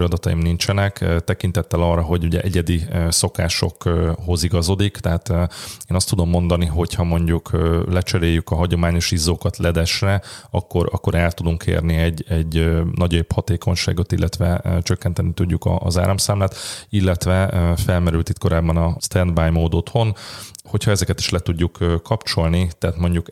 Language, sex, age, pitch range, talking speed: Hungarian, male, 30-49, 85-95 Hz, 135 wpm